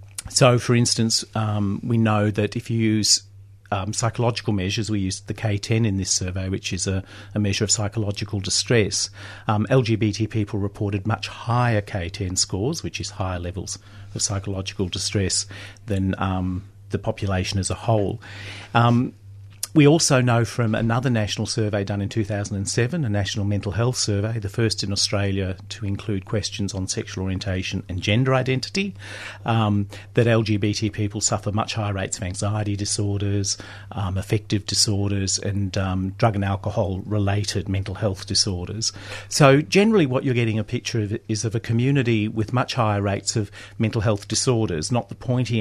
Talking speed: 165 wpm